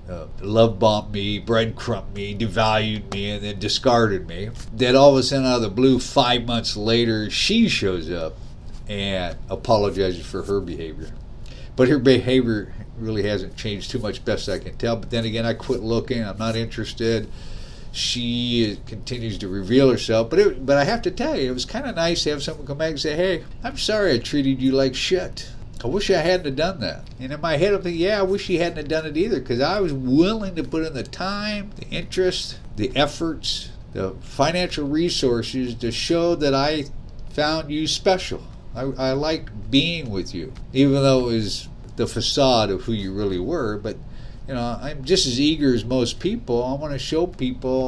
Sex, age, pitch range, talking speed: male, 50-69, 110-150 Hz, 205 wpm